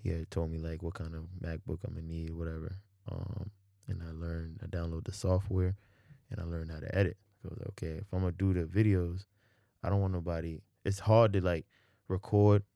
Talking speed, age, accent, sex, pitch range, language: 220 wpm, 20-39, American, male, 85-105 Hz, English